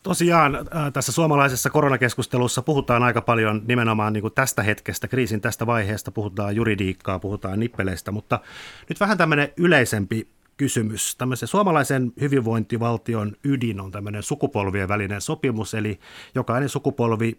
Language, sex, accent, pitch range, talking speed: Finnish, male, native, 105-125 Hz, 125 wpm